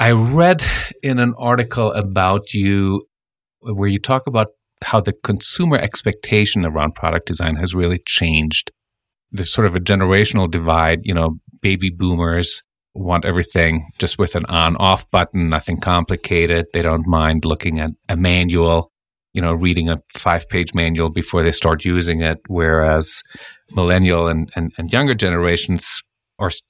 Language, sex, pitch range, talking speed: English, male, 85-105 Hz, 150 wpm